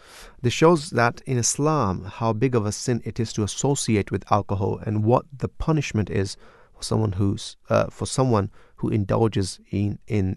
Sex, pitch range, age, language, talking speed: male, 100-120 Hz, 30-49, English, 180 wpm